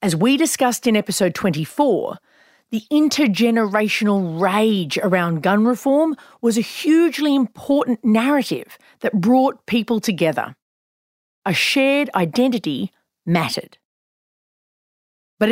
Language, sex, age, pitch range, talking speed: English, female, 40-59, 195-265 Hz, 100 wpm